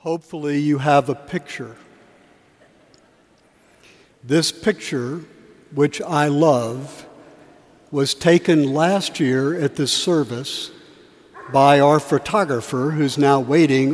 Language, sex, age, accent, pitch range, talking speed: English, male, 60-79, American, 140-170 Hz, 100 wpm